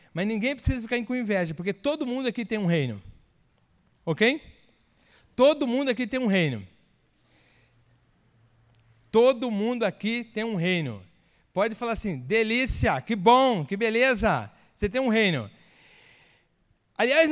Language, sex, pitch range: Portuguese, male, 170-255 Hz